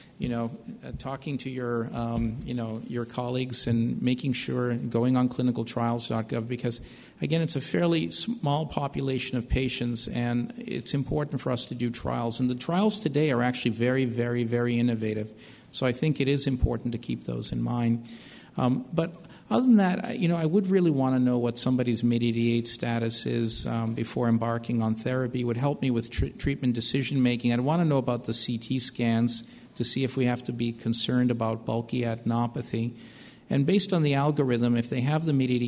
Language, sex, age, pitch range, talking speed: English, male, 50-69, 115-130 Hz, 195 wpm